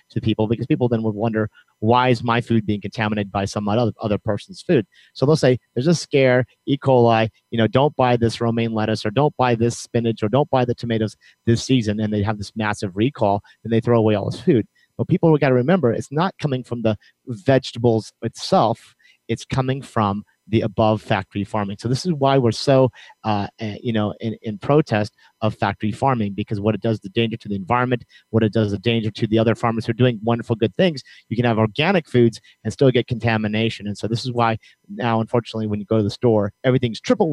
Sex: male